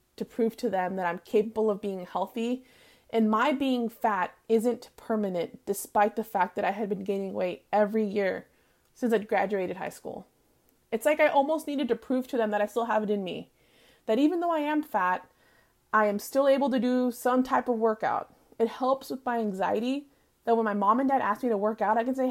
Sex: female